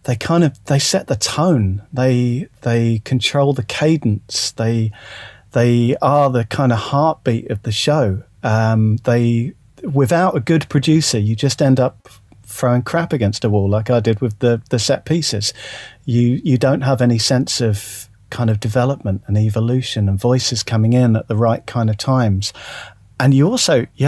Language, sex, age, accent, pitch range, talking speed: English, male, 40-59, British, 110-135 Hz, 175 wpm